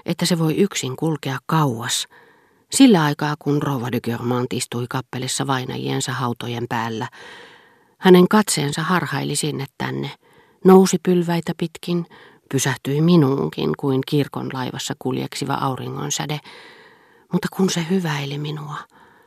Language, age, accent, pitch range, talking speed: Finnish, 40-59, native, 120-160 Hz, 115 wpm